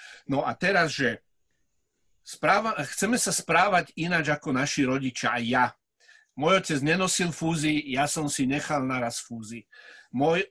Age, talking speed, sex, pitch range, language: 50-69, 145 wpm, male, 135-170 Hz, Slovak